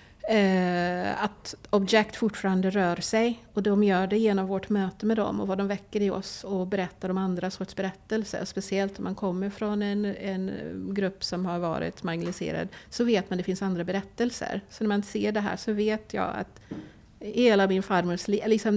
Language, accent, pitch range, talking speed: English, Swedish, 185-215 Hz, 190 wpm